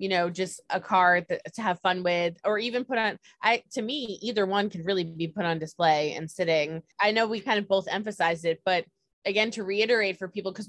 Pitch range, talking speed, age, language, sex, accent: 175-215 Hz, 235 wpm, 20-39, English, female, American